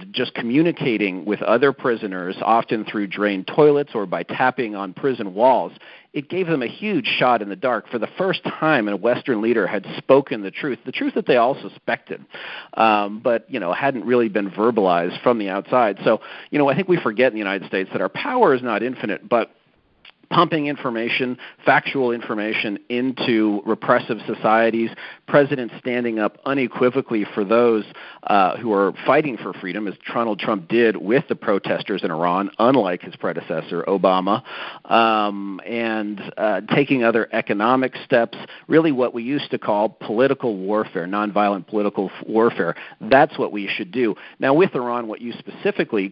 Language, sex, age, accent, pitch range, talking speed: English, male, 40-59, American, 105-135 Hz, 170 wpm